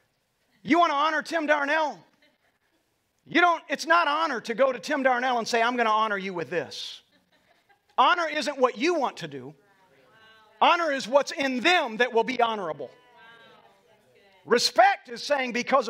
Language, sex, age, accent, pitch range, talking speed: English, male, 40-59, American, 170-255 Hz, 170 wpm